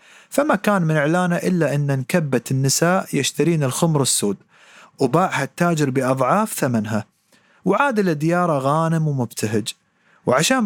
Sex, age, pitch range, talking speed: male, 40-59, 135-180 Hz, 120 wpm